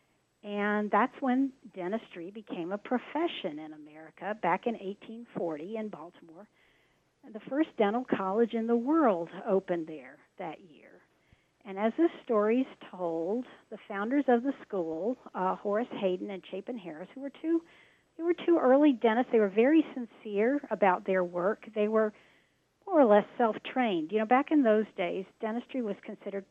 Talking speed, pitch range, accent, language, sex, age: 165 wpm, 190-245 Hz, American, English, female, 50-69